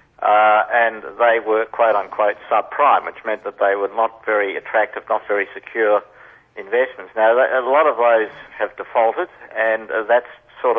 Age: 50-69